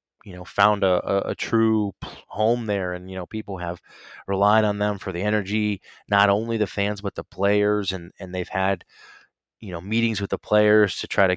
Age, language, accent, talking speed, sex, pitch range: 20-39, English, American, 210 wpm, male, 95-115 Hz